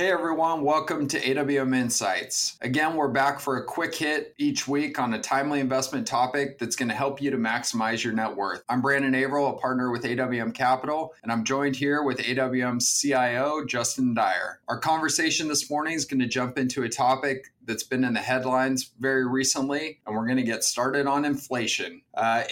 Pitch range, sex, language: 115-140 Hz, male, English